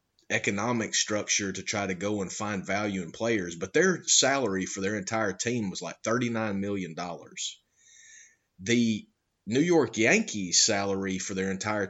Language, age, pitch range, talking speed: English, 30-49, 100-125 Hz, 150 wpm